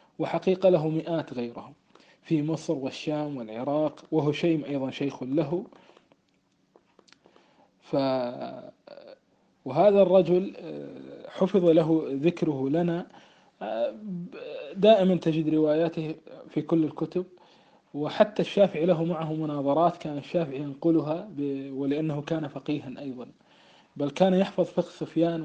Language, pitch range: Arabic, 140-170 Hz